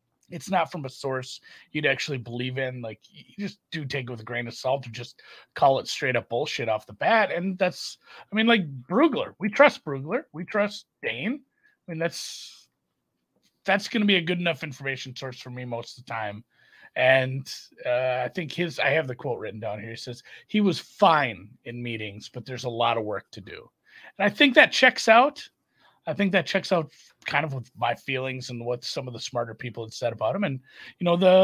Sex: male